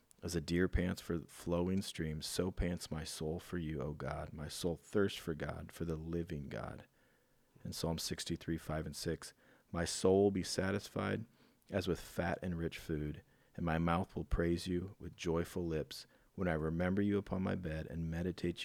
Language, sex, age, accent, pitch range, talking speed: English, male, 40-59, American, 80-90 Hz, 185 wpm